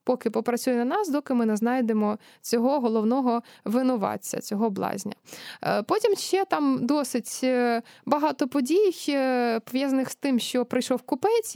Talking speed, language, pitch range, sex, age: 130 wpm, Ukrainian, 240-310 Hz, female, 20-39